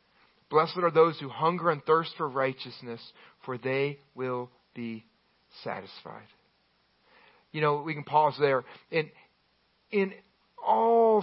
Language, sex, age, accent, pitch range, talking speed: English, male, 40-59, American, 135-180 Hz, 125 wpm